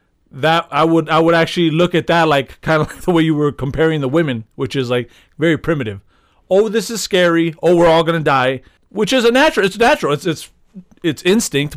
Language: English